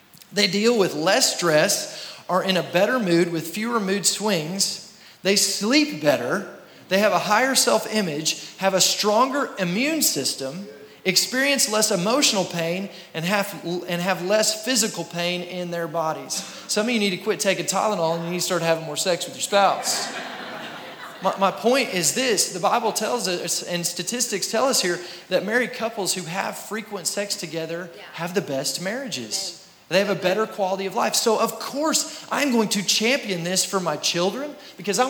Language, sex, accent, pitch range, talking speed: English, male, American, 180-235 Hz, 180 wpm